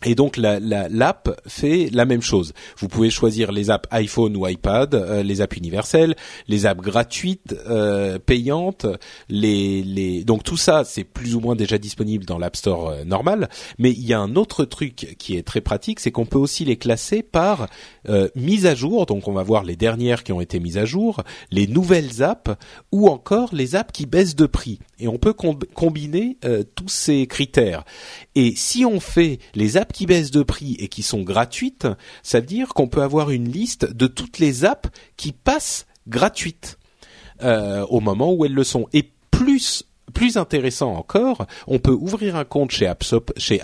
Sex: male